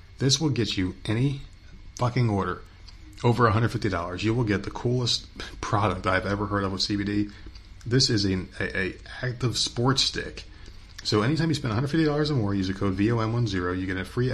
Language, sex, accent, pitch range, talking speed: English, male, American, 95-110 Hz, 185 wpm